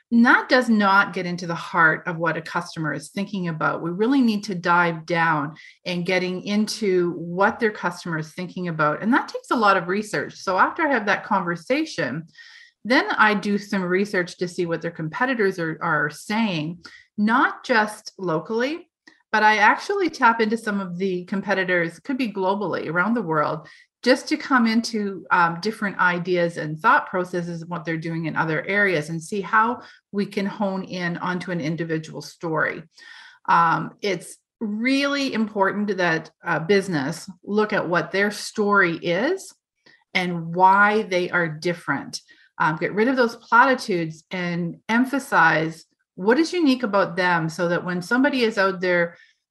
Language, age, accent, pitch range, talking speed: English, 40-59, American, 175-225 Hz, 170 wpm